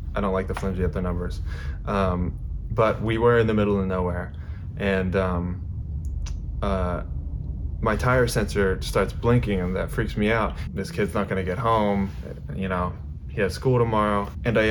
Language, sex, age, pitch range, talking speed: English, male, 20-39, 85-105 Hz, 180 wpm